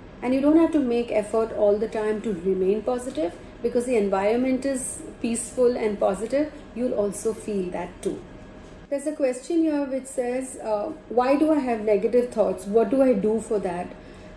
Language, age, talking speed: English, 40-59, 185 wpm